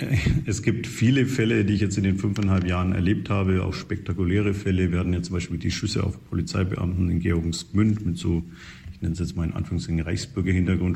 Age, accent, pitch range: 50-69, German, 90-100 Hz